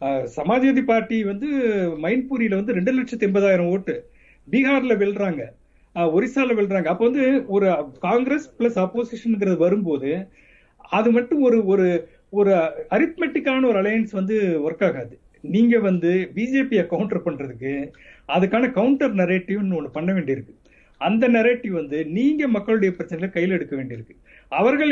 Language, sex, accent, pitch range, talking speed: Tamil, male, native, 170-235 Hz, 125 wpm